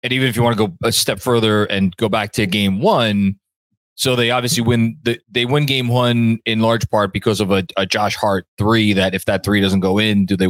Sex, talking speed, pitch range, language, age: male, 250 wpm, 95-120 Hz, English, 20-39